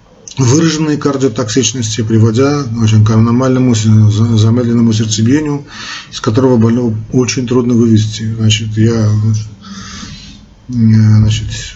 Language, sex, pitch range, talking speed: Russian, male, 110-125 Hz, 90 wpm